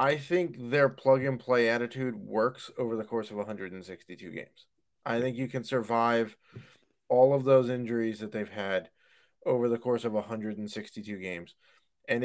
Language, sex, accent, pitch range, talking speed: English, male, American, 105-140 Hz, 160 wpm